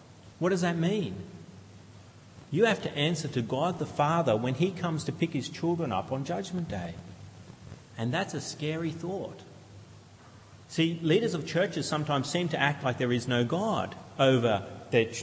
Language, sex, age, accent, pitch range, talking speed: English, male, 40-59, Australian, 110-155 Hz, 170 wpm